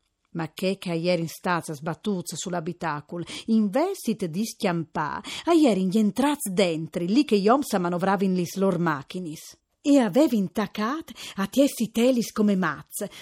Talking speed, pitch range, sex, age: 150 wpm, 180-255 Hz, female, 40-59